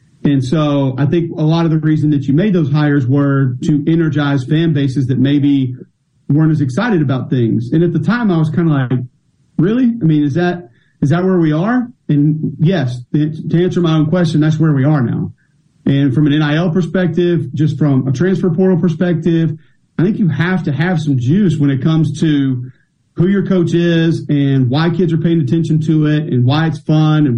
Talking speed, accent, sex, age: 215 wpm, American, male, 40-59